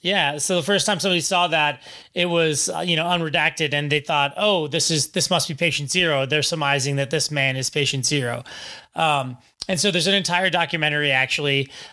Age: 20-39